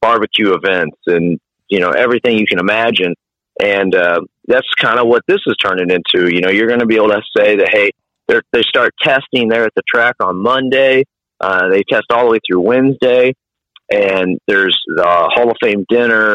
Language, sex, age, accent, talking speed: English, male, 30-49, American, 200 wpm